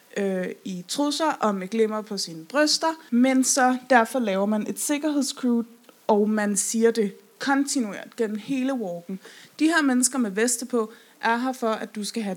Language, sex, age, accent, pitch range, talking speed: Danish, female, 20-39, native, 210-260 Hz, 170 wpm